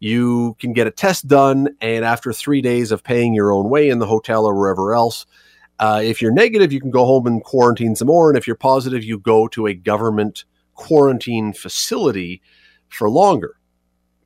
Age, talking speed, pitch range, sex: 40-59, 195 wpm, 105-135 Hz, male